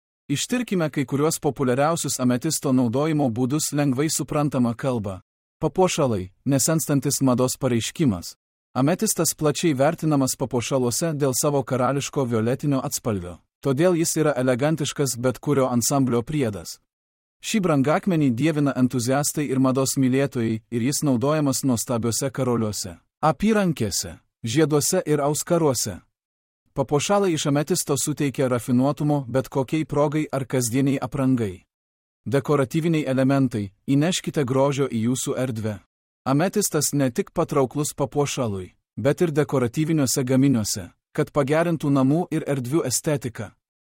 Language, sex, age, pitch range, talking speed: English, male, 40-59, 125-150 Hz, 110 wpm